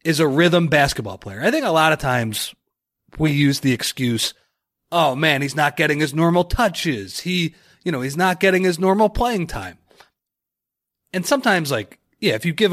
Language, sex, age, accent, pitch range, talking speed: English, male, 30-49, American, 130-185 Hz, 190 wpm